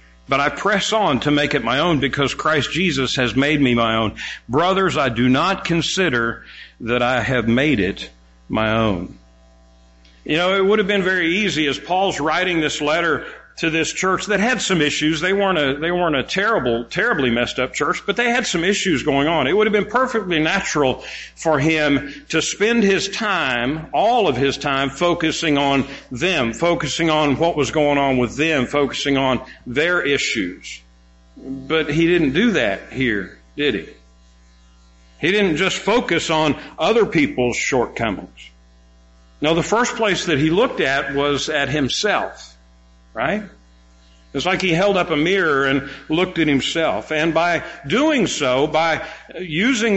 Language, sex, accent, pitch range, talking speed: English, male, American, 120-170 Hz, 170 wpm